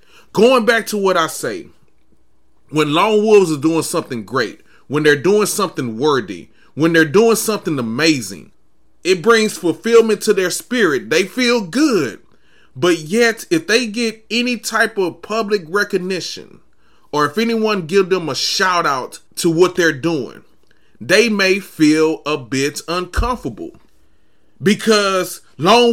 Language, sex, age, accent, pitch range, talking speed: English, male, 30-49, American, 160-225 Hz, 145 wpm